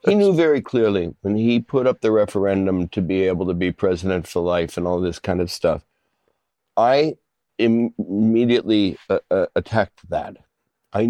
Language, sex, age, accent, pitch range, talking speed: English, male, 60-79, American, 100-130 Hz, 175 wpm